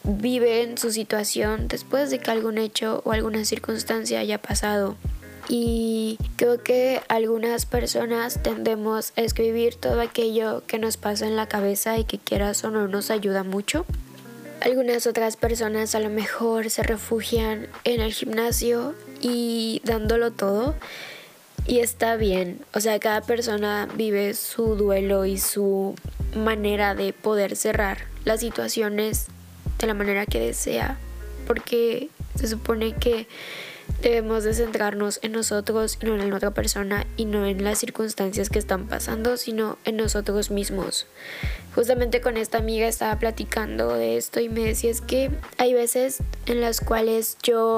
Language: Spanish